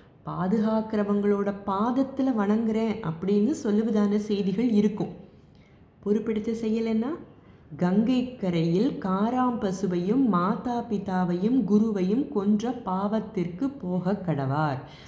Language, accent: Tamil, native